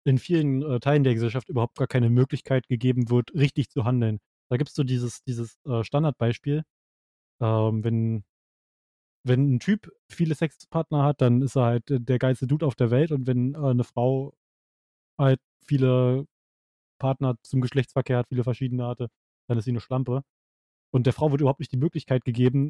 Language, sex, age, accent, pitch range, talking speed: German, male, 20-39, German, 120-140 Hz, 180 wpm